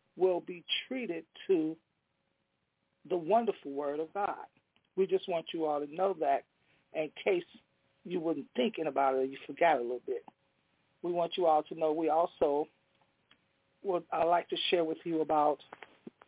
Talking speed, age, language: 170 wpm, 40-59, English